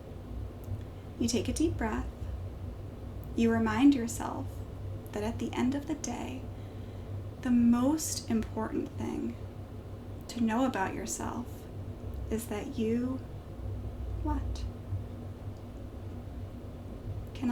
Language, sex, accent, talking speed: English, female, American, 95 wpm